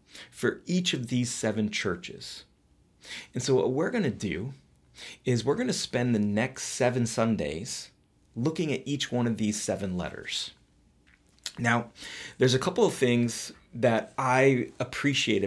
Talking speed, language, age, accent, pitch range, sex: 150 wpm, English, 30-49, American, 95-130 Hz, male